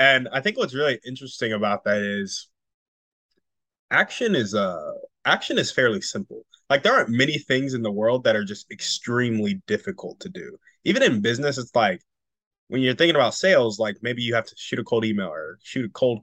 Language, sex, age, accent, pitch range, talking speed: English, male, 20-39, American, 110-145 Hz, 200 wpm